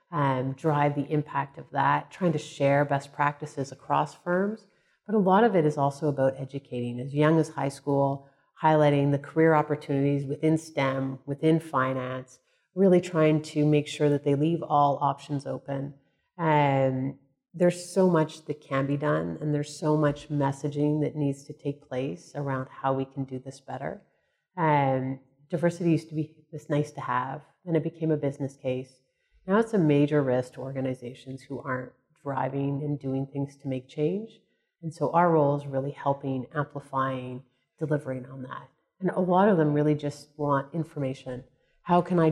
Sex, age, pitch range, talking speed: female, 30-49, 135-160 Hz, 175 wpm